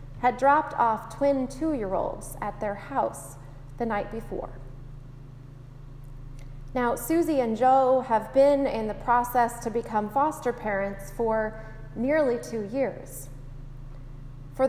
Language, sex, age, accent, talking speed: English, female, 20-39, American, 120 wpm